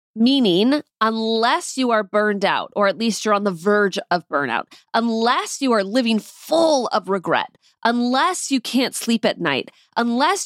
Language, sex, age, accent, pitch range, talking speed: English, female, 30-49, American, 200-270 Hz, 165 wpm